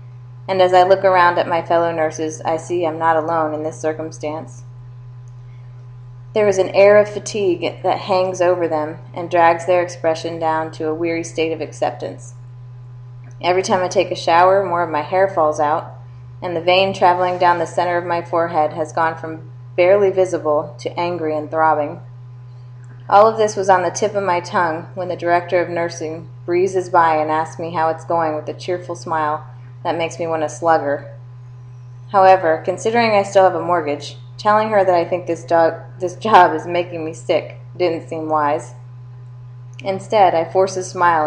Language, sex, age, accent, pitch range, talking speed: English, female, 20-39, American, 125-180 Hz, 190 wpm